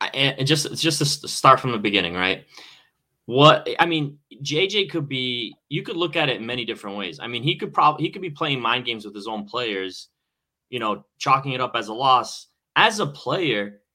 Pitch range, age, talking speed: 120-150 Hz, 20-39, 205 wpm